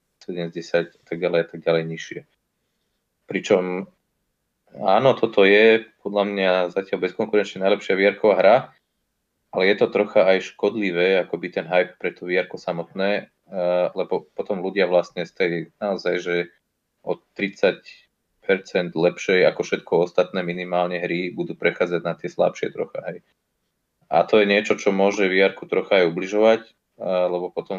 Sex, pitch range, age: male, 85-100 Hz, 20-39